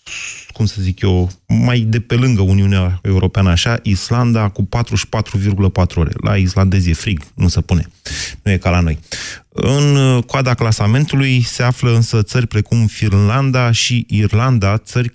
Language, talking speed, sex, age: Romanian, 155 wpm, male, 30-49